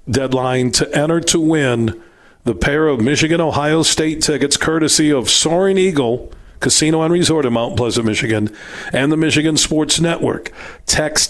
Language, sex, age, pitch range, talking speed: English, male, 40-59, 120-150 Hz, 150 wpm